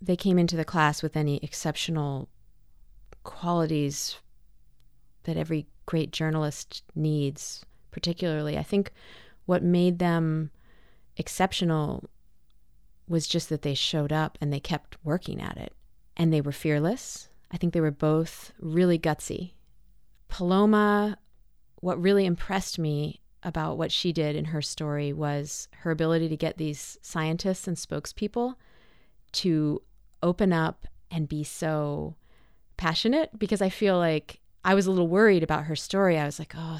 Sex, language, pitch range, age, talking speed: female, English, 150-180 Hz, 30-49, 145 wpm